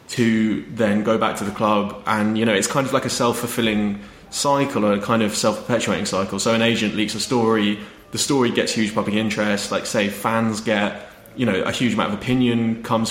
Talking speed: 215 wpm